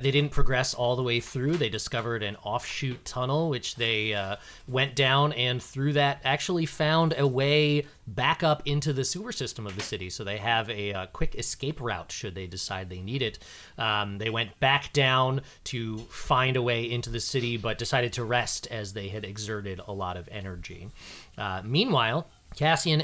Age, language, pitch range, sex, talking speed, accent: 30-49, English, 110-140 Hz, male, 195 wpm, American